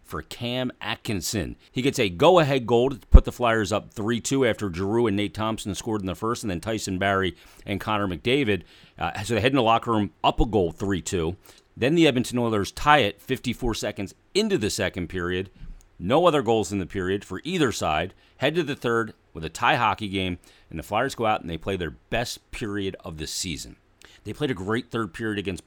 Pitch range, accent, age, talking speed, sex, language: 90-110 Hz, American, 40-59, 215 wpm, male, English